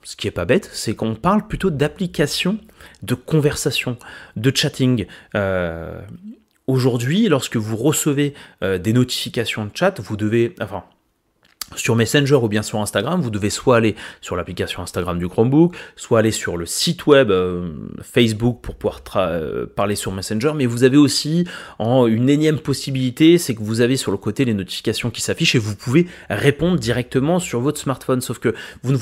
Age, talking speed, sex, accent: 30-49, 180 wpm, male, French